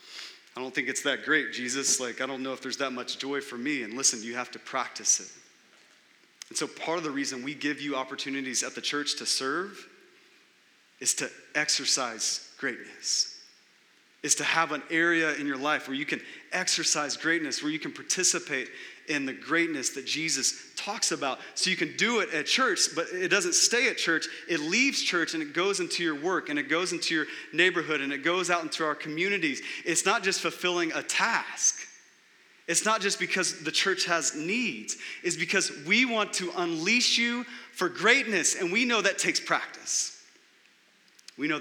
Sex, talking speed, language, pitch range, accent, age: male, 195 wpm, English, 140-195 Hz, American, 30-49